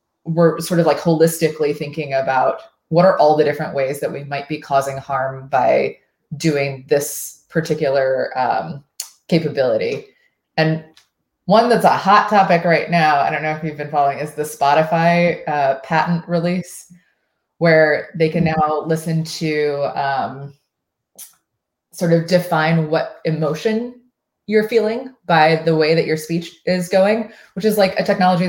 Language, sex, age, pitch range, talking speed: English, female, 20-39, 155-200 Hz, 155 wpm